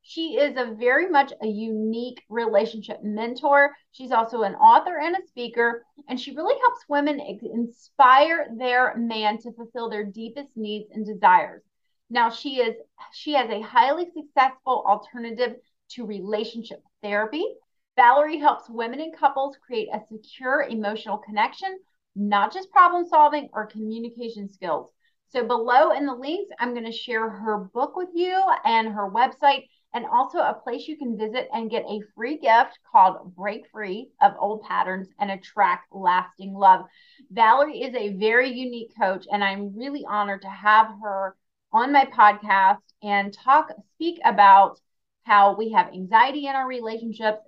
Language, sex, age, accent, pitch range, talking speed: English, female, 30-49, American, 210-285 Hz, 155 wpm